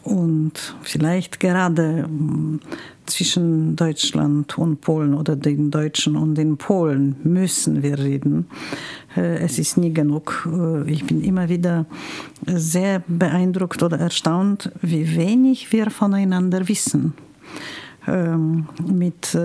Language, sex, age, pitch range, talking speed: German, female, 50-69, 155-185 Hz, 105 wpm